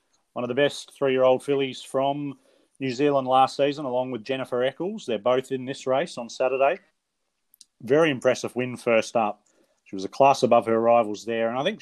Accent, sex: Australian, male